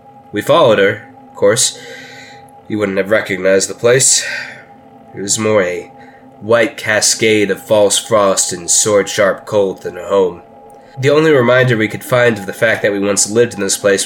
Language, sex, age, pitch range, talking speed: English, male, 20-39, 100-135 Hz, 180 wpm